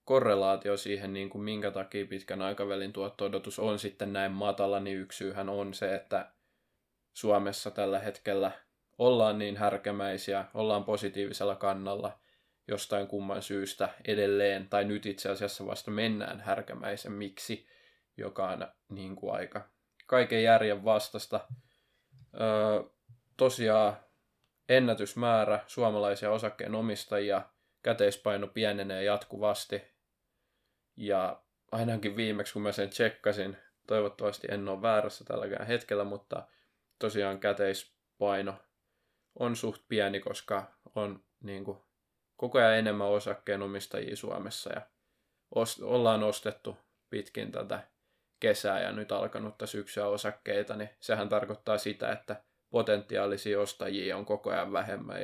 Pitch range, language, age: 100-105 Hz, Finnish, 20-39